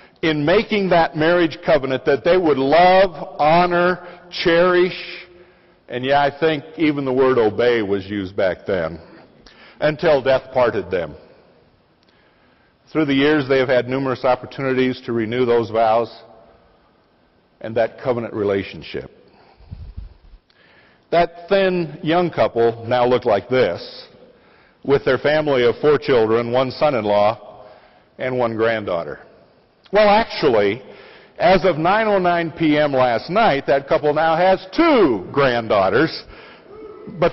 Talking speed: 120 wpm